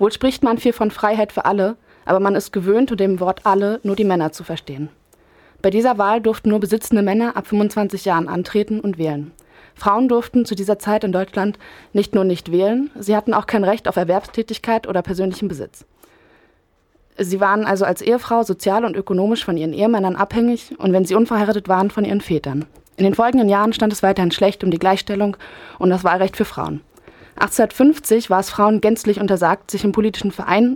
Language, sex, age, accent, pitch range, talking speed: German, female, 20-39, German, 185-220 Hz, 195 wpm